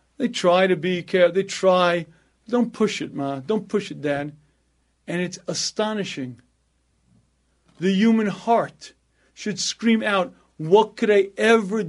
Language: English